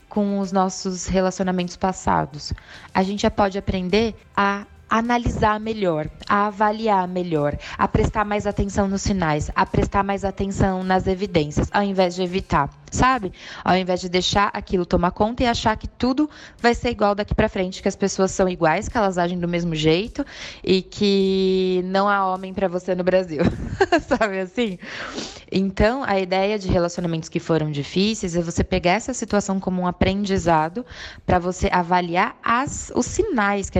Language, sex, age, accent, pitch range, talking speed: Portuguese, female, 20-39, Brazilian, 175-215 Hz, 165 wpm